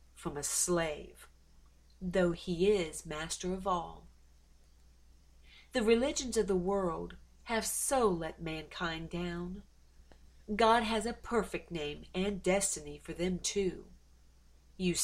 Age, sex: 40-59, female